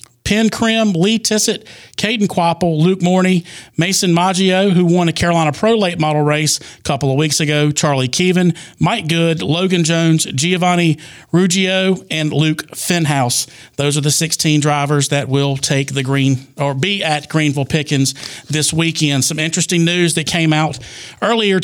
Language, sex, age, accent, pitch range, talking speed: English, male, 40-59, American, 145-170 Hz, 160 wpm